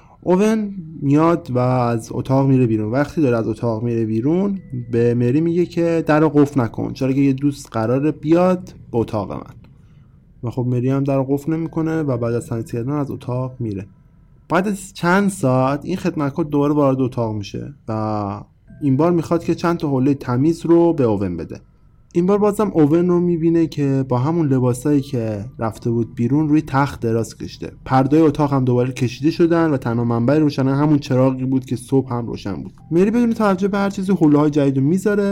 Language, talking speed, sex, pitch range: Persian, 185 wpm, male, 125-165 Hz